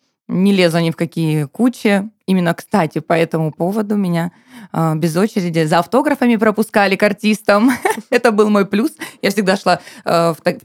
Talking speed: 150 wpm